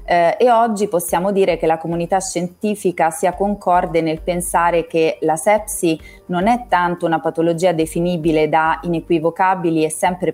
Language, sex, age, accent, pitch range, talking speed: Italian, female, 30-49, native, 165-195 Hz, 150 wpm